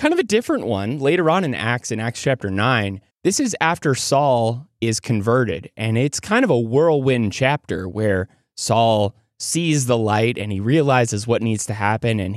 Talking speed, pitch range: 190 wpm, 110-145 Hz